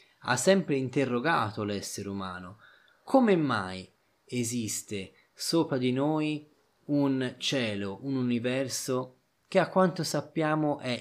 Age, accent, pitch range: 20-39, native, 105-140 Hz